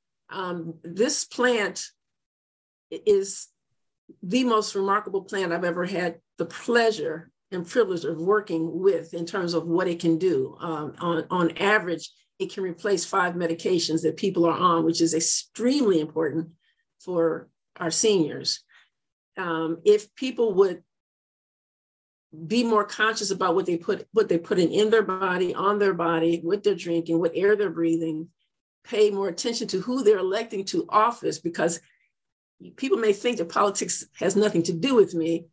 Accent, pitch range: American, 170-215 Hz